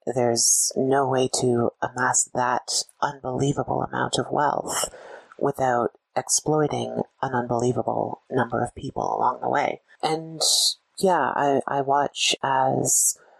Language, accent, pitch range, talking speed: English, American, 125-145 Hz, 115 wpm